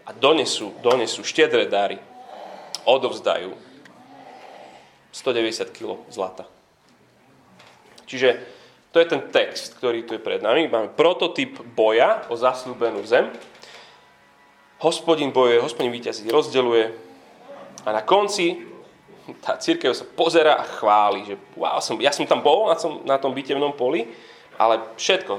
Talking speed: 125 wpm